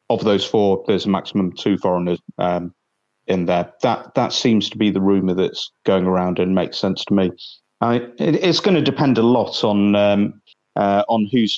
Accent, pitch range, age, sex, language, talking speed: British, 95-105 Hz, 30-49, male, English, 205 wpm